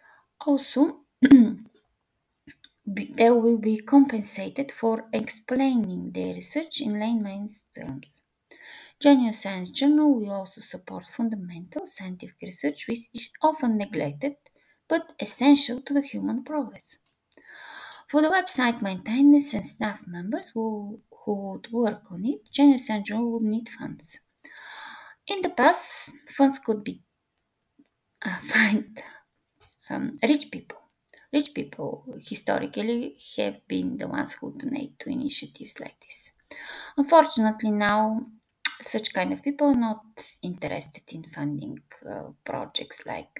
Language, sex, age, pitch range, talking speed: English, female, 20-39, 210-290 Hz, 120 wpm